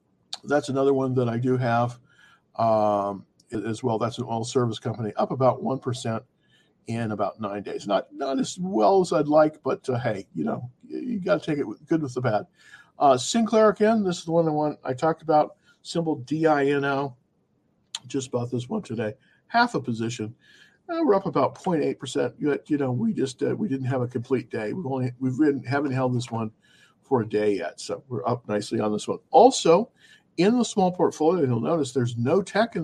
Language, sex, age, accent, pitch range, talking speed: English, male, 50-69, American, 120-155 Hz, 205 wpm